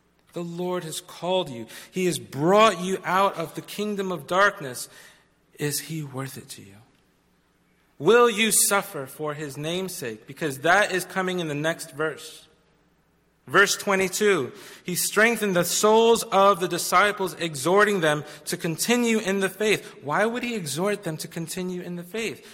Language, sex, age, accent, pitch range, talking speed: English, male, 40-59, American, 155-190 Hz, 160 wpm